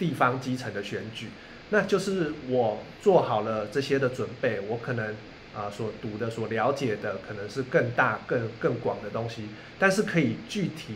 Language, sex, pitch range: Chinese, male, 110-145 Hz